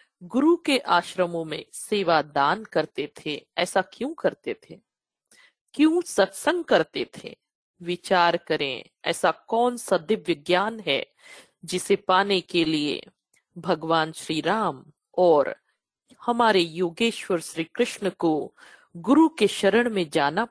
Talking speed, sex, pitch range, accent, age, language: 125 wpm, female, 165-215 Hz, native, 50-69, Hindi